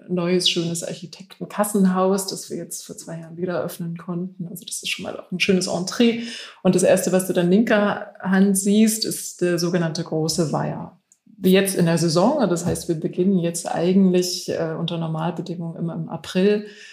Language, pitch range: German, 175-200 Hz